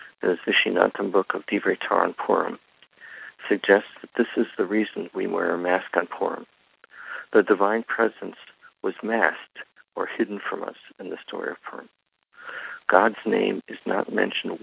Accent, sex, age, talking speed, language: American, male, 60-79, 155 wpm, English